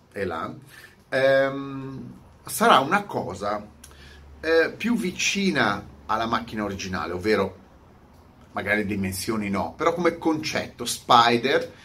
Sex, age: male, 30-49